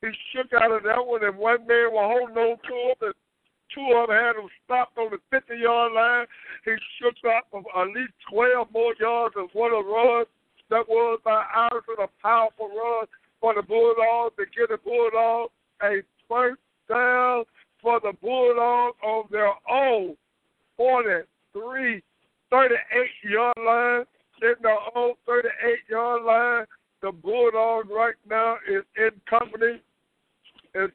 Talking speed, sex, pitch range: 155 wpm, male, 185-235 Hz